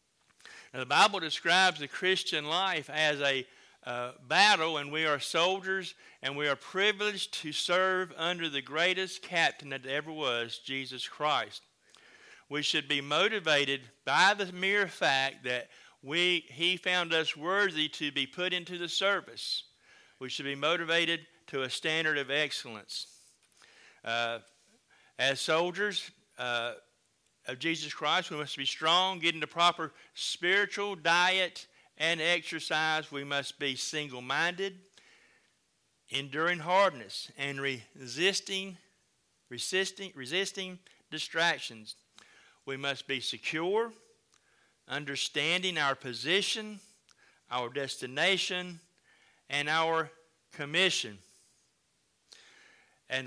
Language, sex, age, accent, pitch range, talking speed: English, male, 50-69, American, 140-185 Hz, 115 wpm